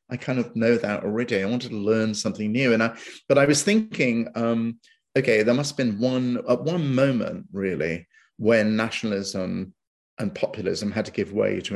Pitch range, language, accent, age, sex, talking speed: 105-135 Hz, English, British, 30-49, male, 195 wpm